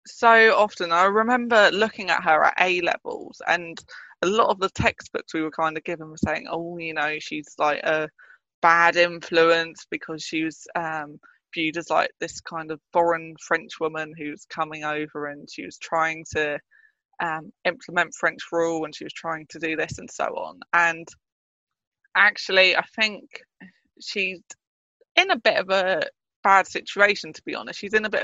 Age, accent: 20-39, British